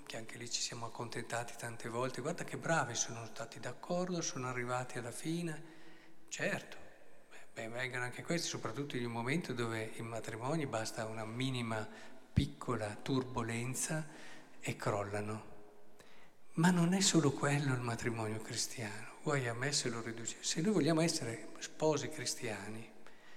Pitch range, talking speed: 115-160 Hz, 145 wpm